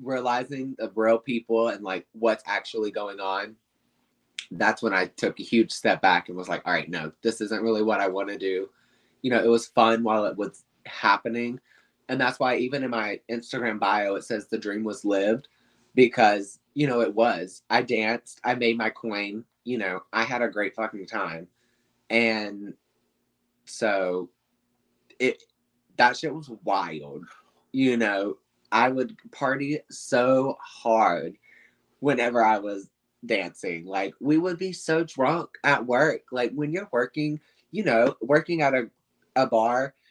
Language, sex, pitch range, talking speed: English, male, 105-130 Hz, 165 wpm